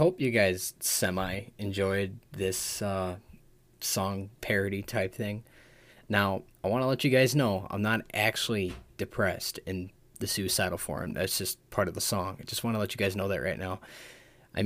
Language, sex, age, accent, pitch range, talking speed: English, male, 20-39, American, 95-120 Hz, 185 wpm